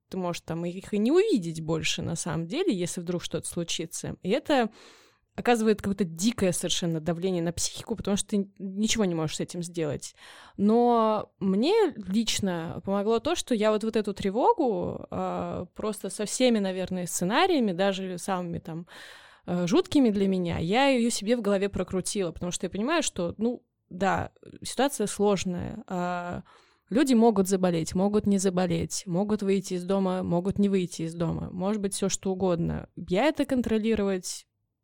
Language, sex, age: Russian, female, 20-39